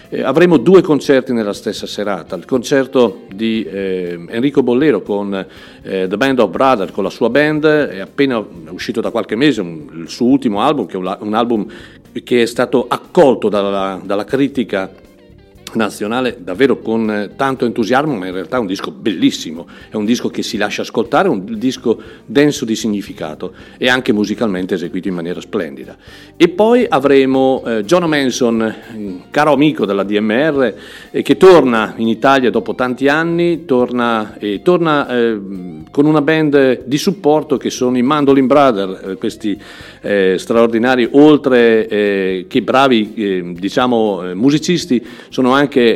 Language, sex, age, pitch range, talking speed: Italian, male, 50-69, 100-140 Hz, 160 wpm